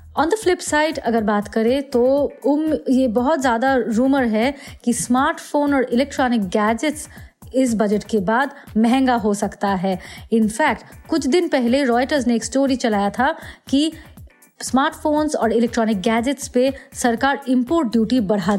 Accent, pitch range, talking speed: native, 225-285 Hz, 150 wpm